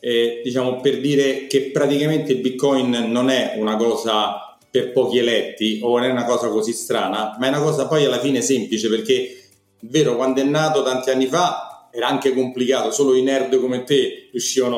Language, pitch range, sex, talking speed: Italian, 115-135 Hz, male, 190 wpm